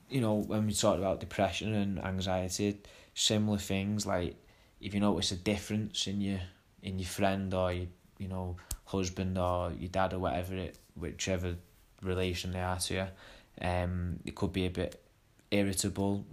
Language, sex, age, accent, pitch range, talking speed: English, male, 20-39, British, 90-100 Hz, 170 wpm